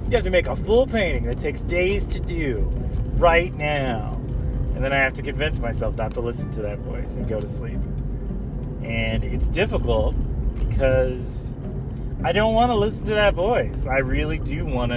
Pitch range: 115-130 Hz